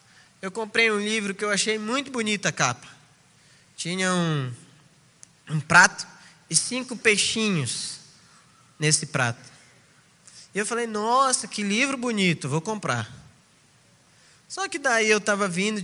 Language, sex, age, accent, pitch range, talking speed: Portuguese, male, 20-39, Brazilian, 160-245 Hz, 135 wpm